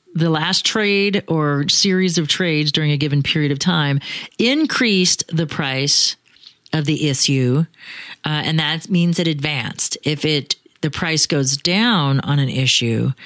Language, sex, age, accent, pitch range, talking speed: English, female, 40-59, American, 150-180 Hz, 155 wpm